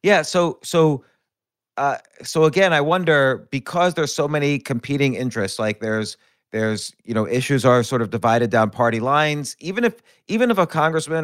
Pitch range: 125-155 Hz